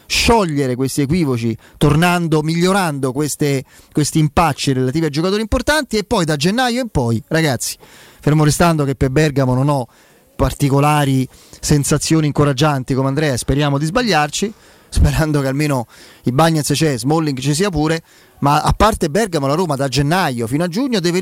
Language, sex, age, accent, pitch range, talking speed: Italian, male, 30-49, native, 135-180 Hz, 160 wpm